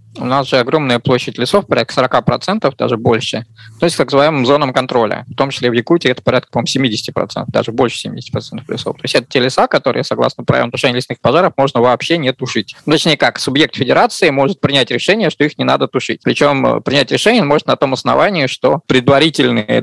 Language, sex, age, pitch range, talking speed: Russian, male, 20-39, 120-150 Hz, 195 wpm